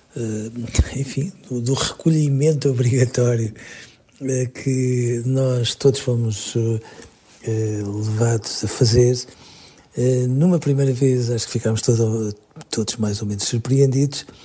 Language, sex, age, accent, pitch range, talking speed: Portuguese, male, 50-69, Portuguese, 115-145 Hz, 120 wpm